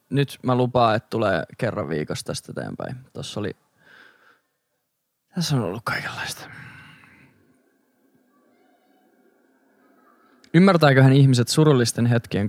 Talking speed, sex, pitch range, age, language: 90 wpm, male, 110-140 Hz, 20-39, Finnish